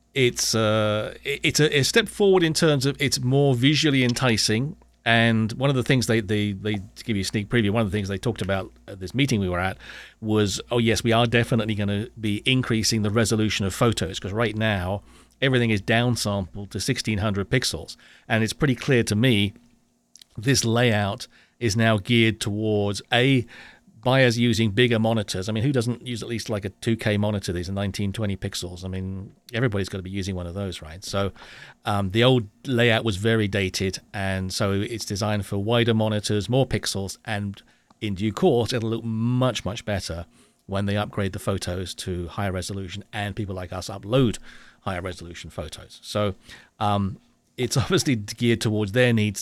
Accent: British